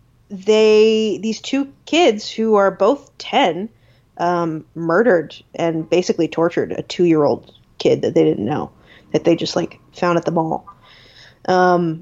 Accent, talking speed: American, 145 wpm